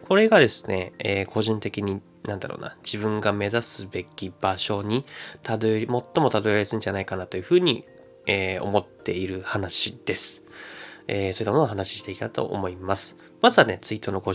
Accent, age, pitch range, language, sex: native, 20-39, 95-120 Hz, Japanese, male